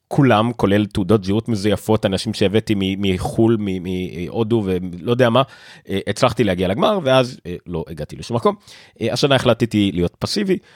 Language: Hebrew